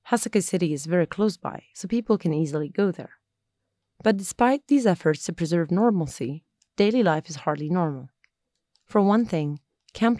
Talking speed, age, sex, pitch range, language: 165 wpm, 30-49, female, 150-200 Hz, Arabic